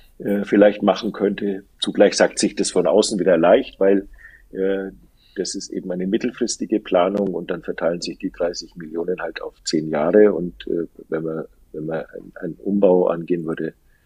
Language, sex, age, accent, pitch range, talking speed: German, male, 50-69, German, 85-110 Hz, 170 wpm